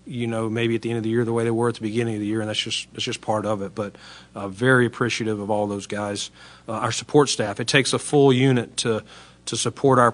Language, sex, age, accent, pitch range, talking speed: English, male, 40-59, American, 105-120 Hz, 285 wpm